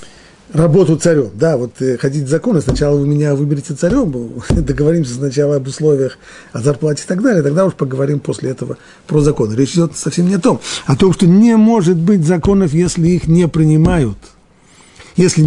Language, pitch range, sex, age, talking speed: Russian, 115-165 Hz, male, 50-69, 180 wpm